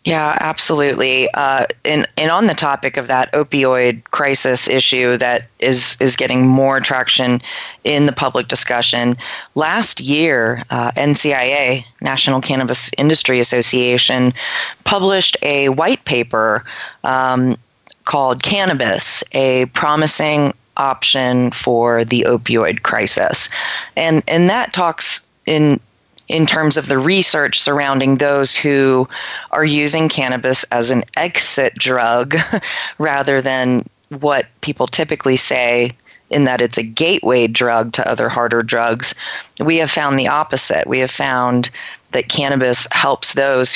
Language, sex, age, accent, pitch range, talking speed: English, female, 30-49, American, 125-145 Hz, 130 wpm